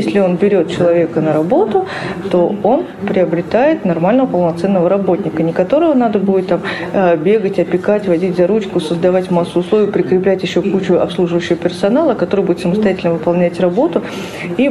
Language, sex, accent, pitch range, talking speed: Russian, female, native, 175-205 Hz, 145 wpm